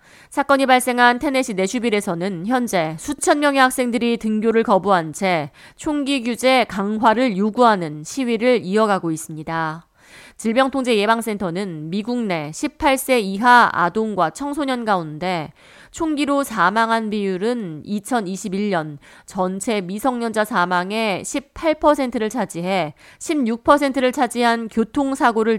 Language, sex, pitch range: Korean, female, 185-250 Hz